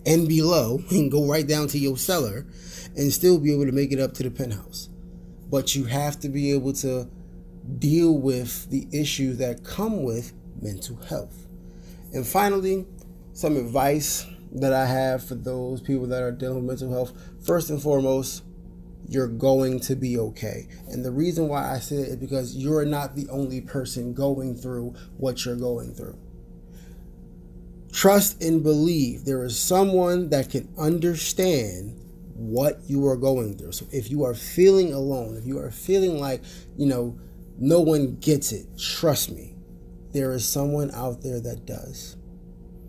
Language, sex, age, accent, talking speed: English, male, 20-39, American, 170 wpm